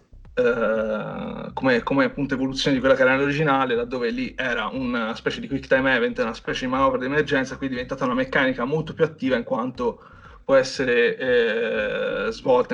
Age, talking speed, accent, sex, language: 30-49, 180 wpm, native, male, Italian